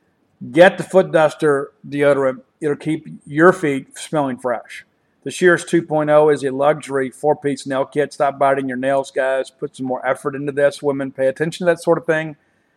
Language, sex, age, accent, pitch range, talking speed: English, male, 50-69, American, 135-155 Hz, 190 wpm